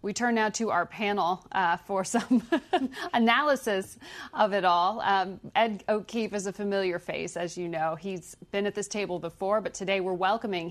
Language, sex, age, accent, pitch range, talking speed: English, female, 40-59, American, 175-215 Hz, 185 wpm